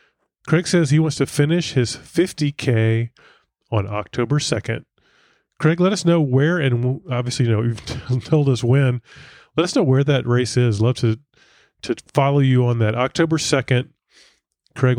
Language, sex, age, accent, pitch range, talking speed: English, male, 30-49, American, 115-150 Hz, 165 wpm